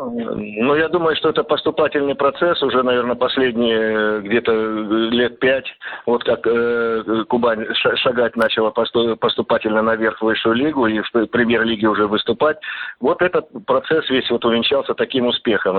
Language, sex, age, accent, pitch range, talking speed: Russian, male, 50-69, native, 110-125 Hz, 135 wpm